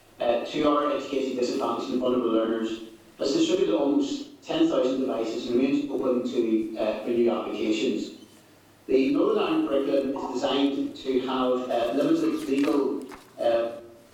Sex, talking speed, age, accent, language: male, 140 wpm, 40-59, British, English